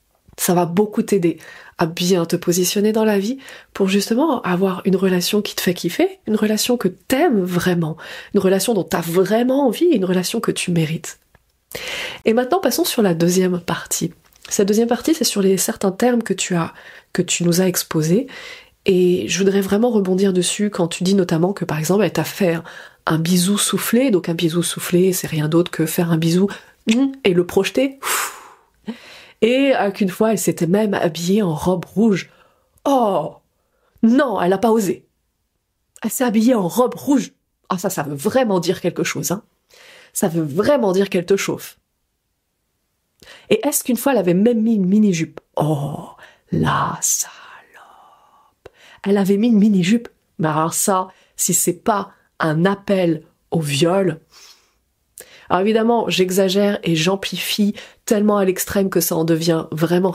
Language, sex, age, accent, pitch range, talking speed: French, female, 30-49, French, 175-220 Hz, 175 wpm